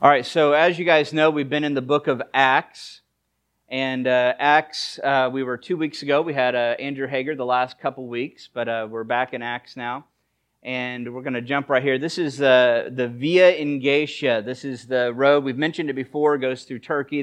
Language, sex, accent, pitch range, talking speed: English, male, American, 125-145 Hz, 225 wpm